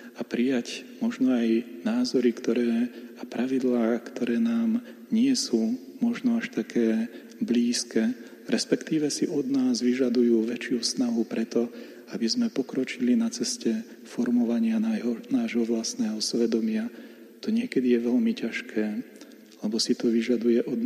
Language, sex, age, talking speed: Slovak, male, 40-59, 125 wpm